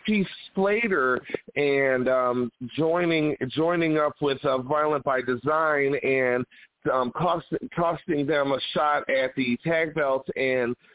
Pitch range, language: 135-170 Hz, English